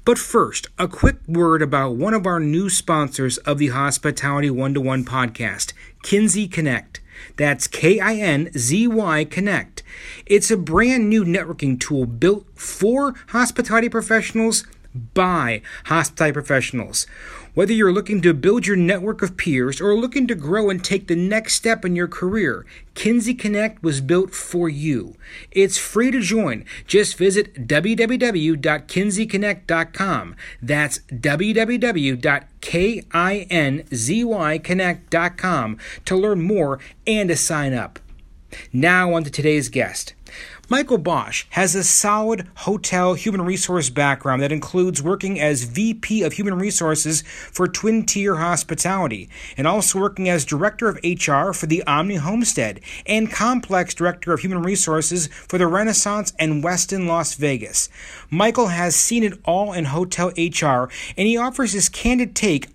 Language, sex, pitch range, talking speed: English, male, 150-205 Hz, 135 wpm